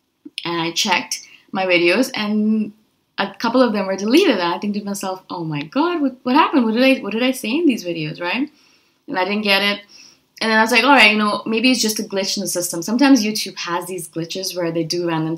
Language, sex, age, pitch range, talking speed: English, female, 20-39, 170-220 Hz, 250 wpm